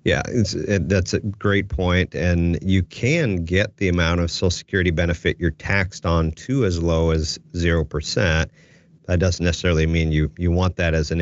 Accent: American